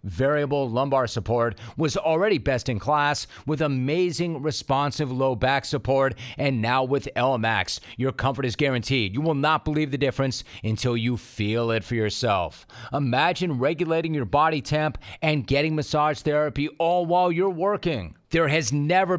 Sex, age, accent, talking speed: male, 30-49, American, 155 wpm